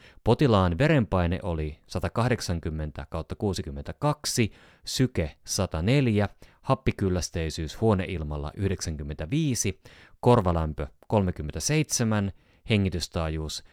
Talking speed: 50 wpm